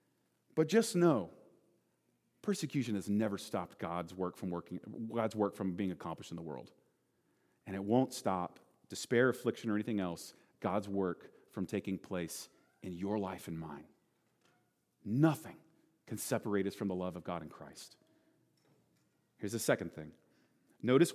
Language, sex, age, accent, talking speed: English, male, 40-59, American, 155 wpm